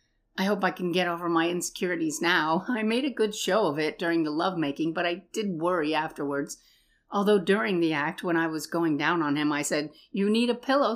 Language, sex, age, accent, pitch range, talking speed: English, female, 60-79, American, 150-205 Hz, 225 wpm